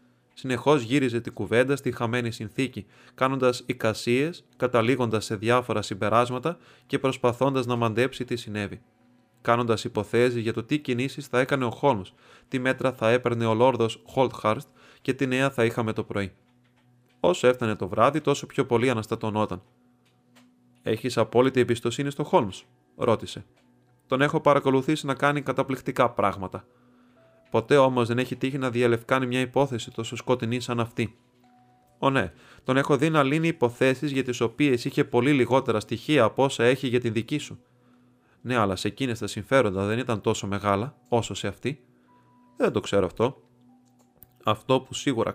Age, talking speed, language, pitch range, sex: 30-49, 155 wpm, Greek, 110-130 Hz, male